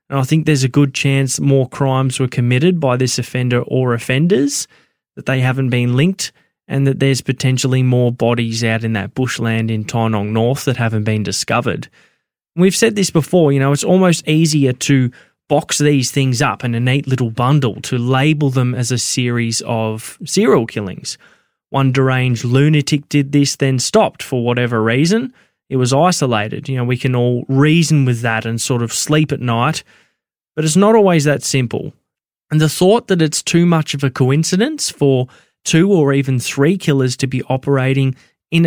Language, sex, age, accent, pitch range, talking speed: English, male, 20-39, Australian, 125-155 Hz, 185 wpm